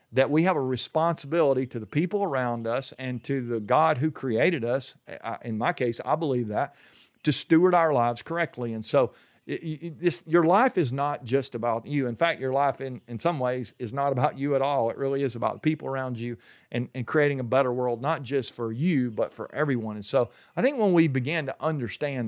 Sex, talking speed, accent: male, 230 wpm, American